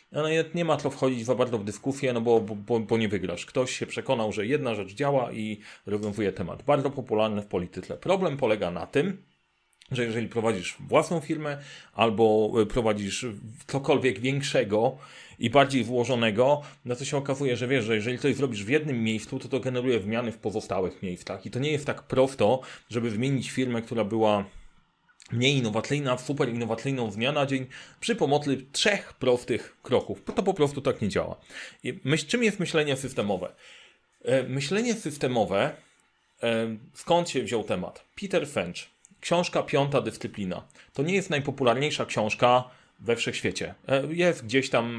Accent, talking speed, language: native, 165 wpm, Polish